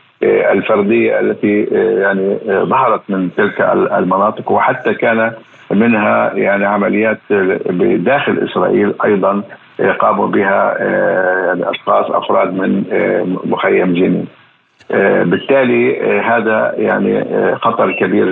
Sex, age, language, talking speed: male, 50-69, Arabic, 90 wpm